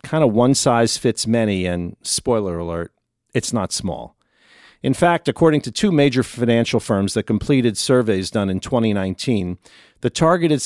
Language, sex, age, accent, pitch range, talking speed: English, male, 50-69, American, 100-135 Hz, 160 wpm